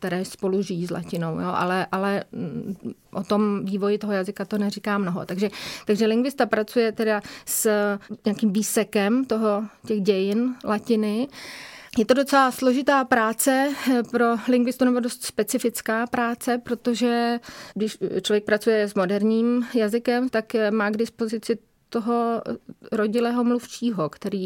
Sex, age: female, 30-49